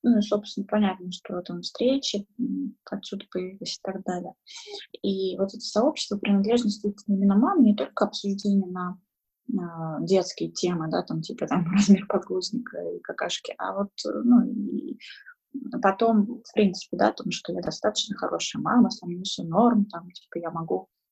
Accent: native